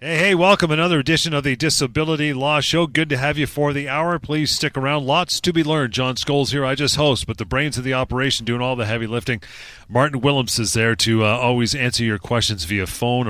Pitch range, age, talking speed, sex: 115-145 Hz, 30-49, 240 wpm, male